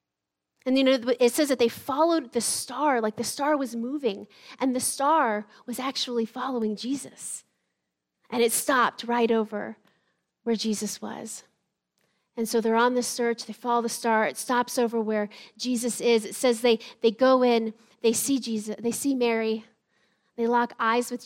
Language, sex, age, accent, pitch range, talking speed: English, female, 30-49, American, 210-260 Hz, 170 wpm